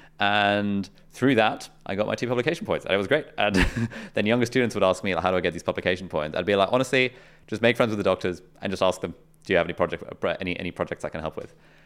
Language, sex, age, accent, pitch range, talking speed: English, male, 20-39, British, 85-115 Hz, 275 wpm